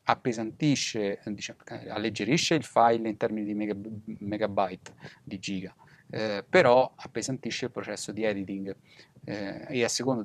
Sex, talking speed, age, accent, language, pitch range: male, 135 wpm, 30-49, native, Italian, 100-120 Hz